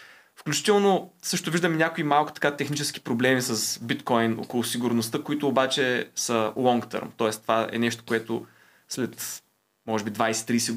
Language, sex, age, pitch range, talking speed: Bulgarian, male, 20-39, 115-150 Hz, 145 wpm